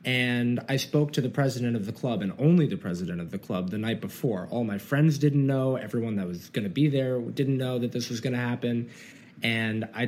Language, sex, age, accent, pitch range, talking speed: English, male, 20-39, American, 115-155 Hz, 245 wpm